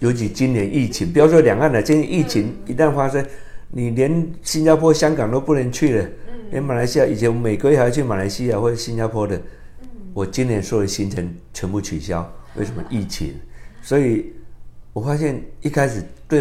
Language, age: Chinese, 50-69